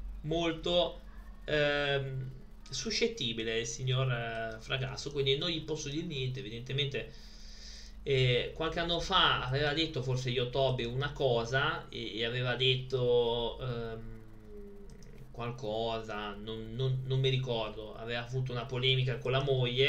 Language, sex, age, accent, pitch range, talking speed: Italian, male, 20-39, native, 115-140 Hz, 125 wpm